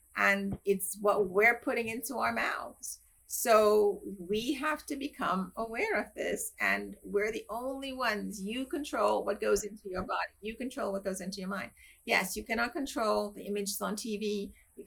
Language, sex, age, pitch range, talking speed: English, female, 40-59, 195-240 Hz, 180 wpm